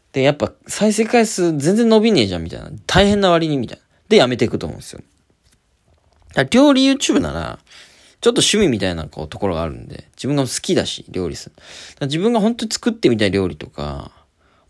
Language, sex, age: Japanese, male, 20-39